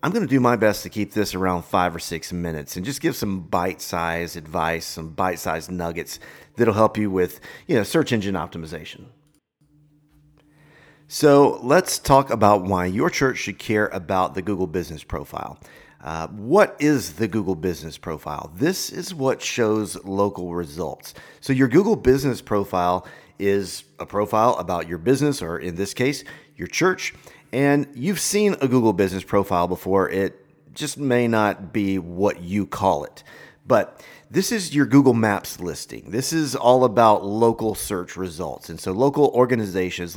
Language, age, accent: English, 40-59, American